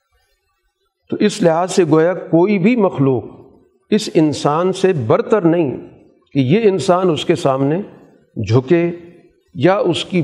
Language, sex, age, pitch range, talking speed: Urdu, male, 50-69, 135-175 Hz, 135 wpm